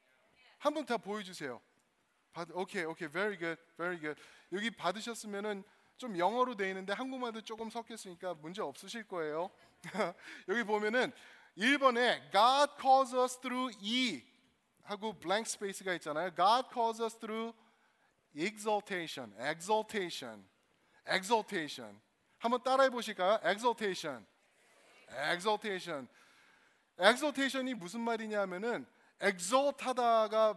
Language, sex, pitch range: Korean, male, 180-245 Hz